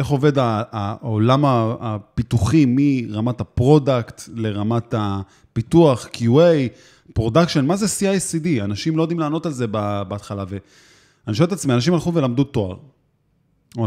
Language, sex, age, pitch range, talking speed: Hebrew, male, 20-39, 115-165 Hz, 125 wpm